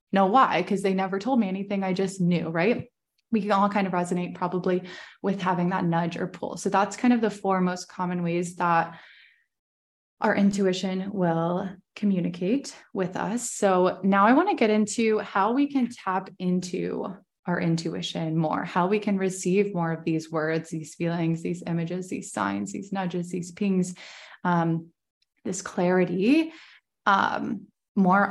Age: 20-39